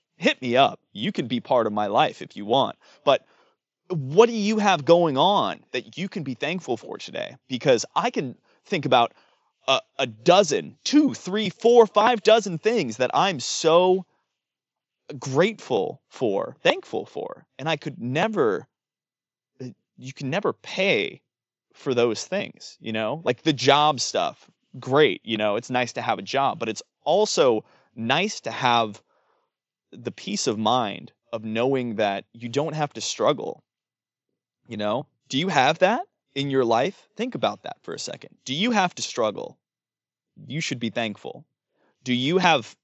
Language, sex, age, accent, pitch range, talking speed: English, male, 30-49, American, 115-180 Hz, 165 wpm